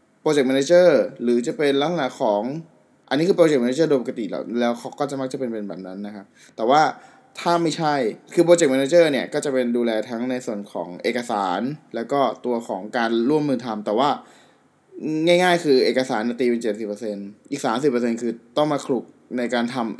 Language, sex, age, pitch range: Thai, male, 20-39, 115-140 Hz